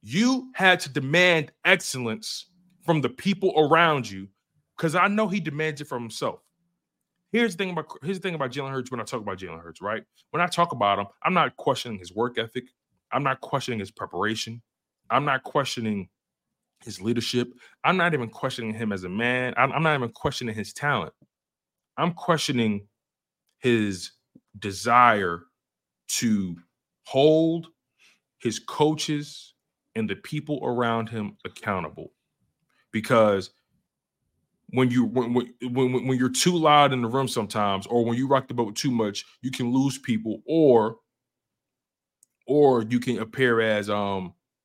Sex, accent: male, American